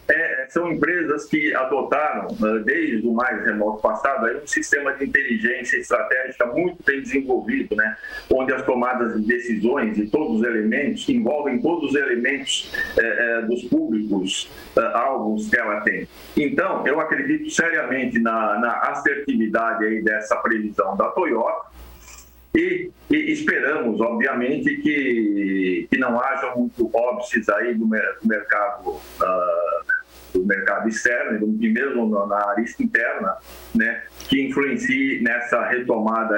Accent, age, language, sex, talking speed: Brazilian, 50-69, Portuguese, male, 135 wpm